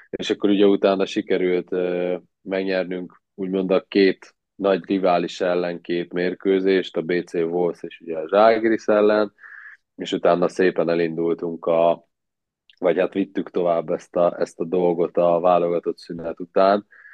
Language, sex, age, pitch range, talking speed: Hungarian, male, 20-39, 85-95 Hz, 145 wpm